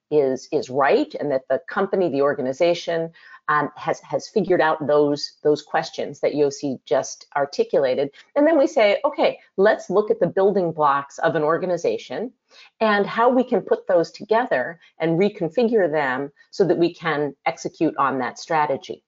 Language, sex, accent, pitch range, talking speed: German, female, American, 145-215 Hz, 165 wpm